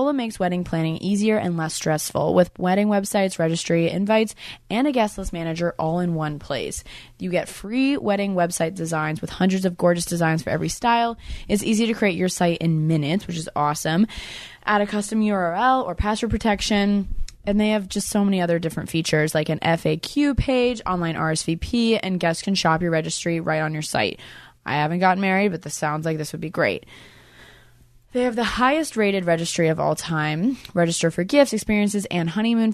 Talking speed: 190 wpm